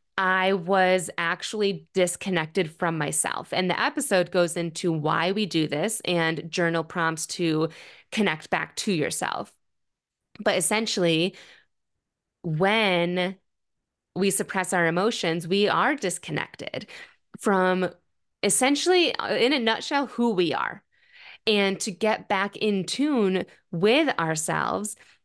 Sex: female